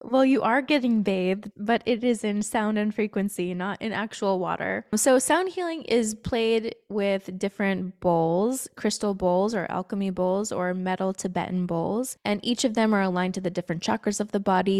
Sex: female